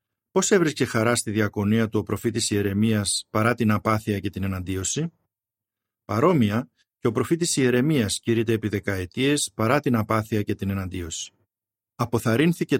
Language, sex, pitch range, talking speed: Greek, male, 105-130 Hz, 140 wpm